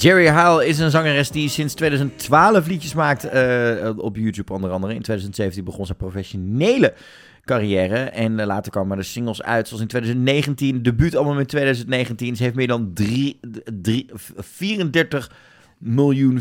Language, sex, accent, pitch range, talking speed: Dutch, male, Dutch, 105-140 Hz, 155 wpm